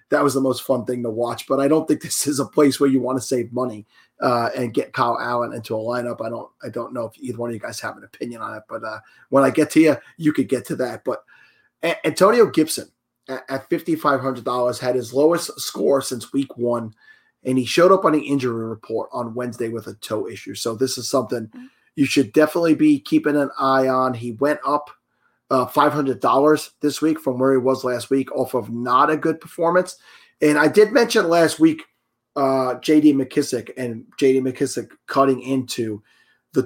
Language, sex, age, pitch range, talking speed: English, male, 30-49, 125-150 Hz, 215 wpm